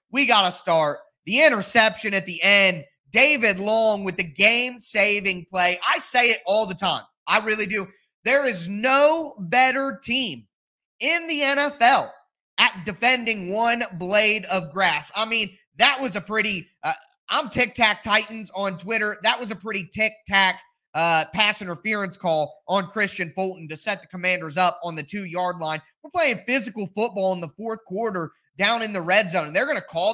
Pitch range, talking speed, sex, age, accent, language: 185-245 Hz, 180 wpm, male, 20-39, American, English